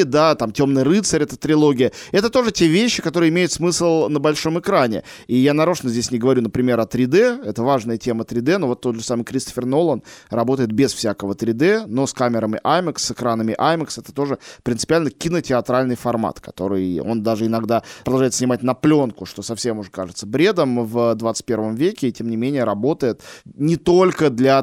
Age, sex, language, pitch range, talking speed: 20-39, male, Russian, 115-150 Hz, 185 wpm